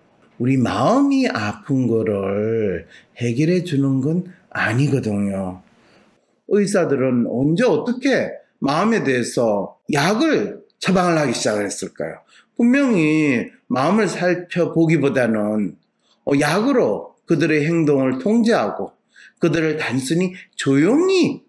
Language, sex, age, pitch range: English, male, 40-59, 125-180 Hz